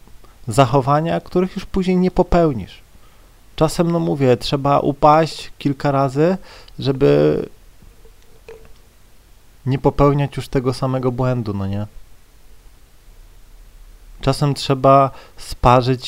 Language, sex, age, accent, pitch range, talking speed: Polish, male, 30-49, native, 110-145 Hz, 95 wpm